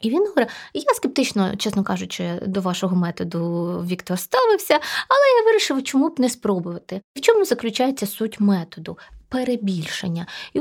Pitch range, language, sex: 190-260 Hz, Ukrainian, female